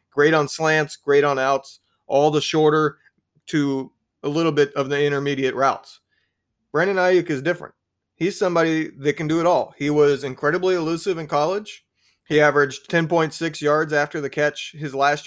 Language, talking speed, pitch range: English, 170 wpm, 135-155 Hz